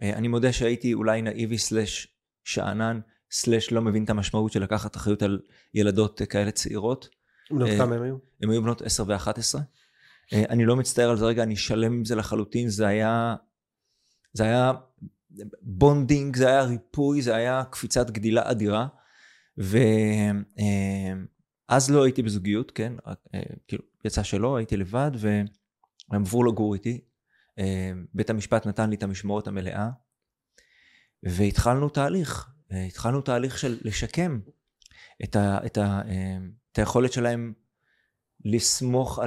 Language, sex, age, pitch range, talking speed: Hebrew, male, 20-39, 105-125 Hz, 125 wpm